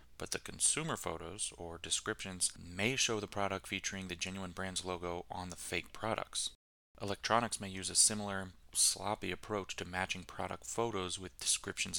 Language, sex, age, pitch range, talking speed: English, male, 30-49, 85-105 Hz, 160 wpm